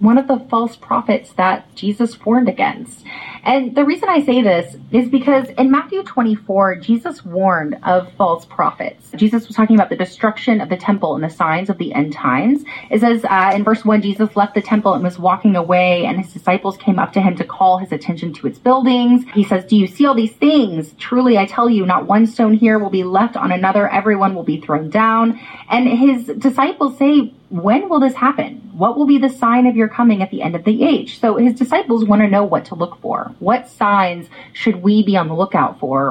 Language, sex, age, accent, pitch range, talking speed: English, female, 30-49, American, 190-250 Hz, 225 wpm